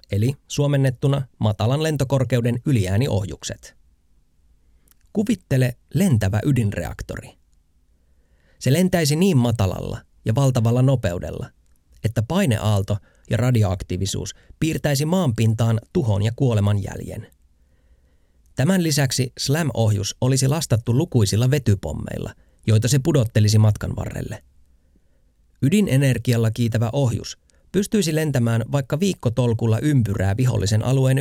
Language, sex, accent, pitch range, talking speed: Finnish, male, native, 90-130 Hz, 90 wpm